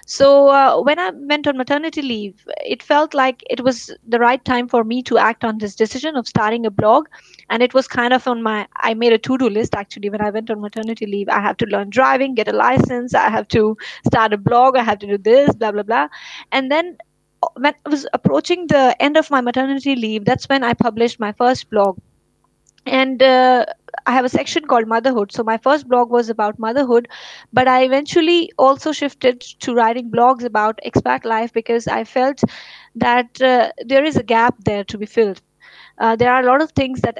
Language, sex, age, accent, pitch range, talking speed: English, female, 20-39, Indian, 225-265 Hz, 220 wpm